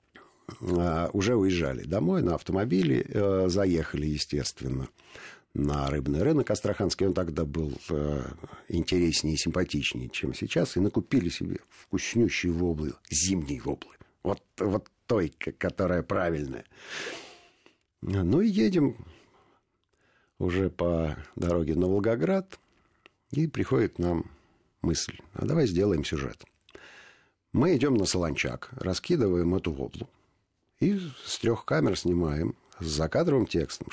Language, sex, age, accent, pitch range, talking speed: Russian, male, 50-69, native, 75-95 Hz, 115 wpm